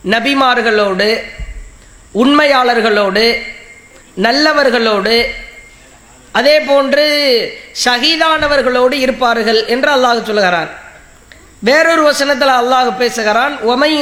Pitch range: 245-295 Hz